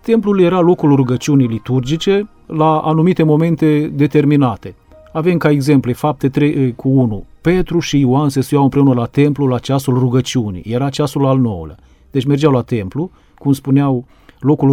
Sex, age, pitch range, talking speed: male, 40-59, 130-155 Hz, 155 wpm